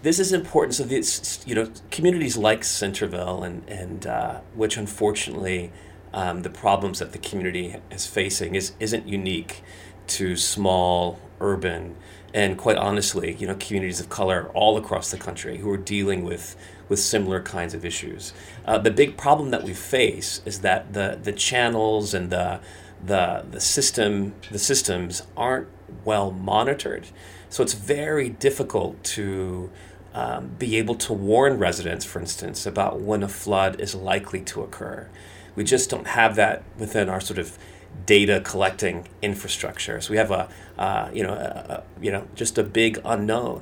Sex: male